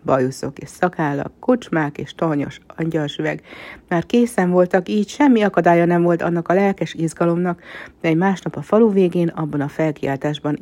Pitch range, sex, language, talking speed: 145-180 Hz, female, Hungarian, 160 wpm